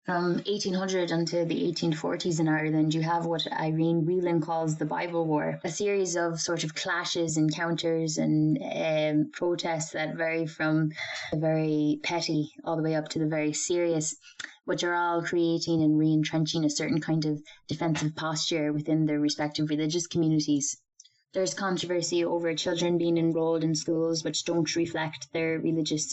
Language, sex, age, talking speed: English, female, 10-29, 160 wpm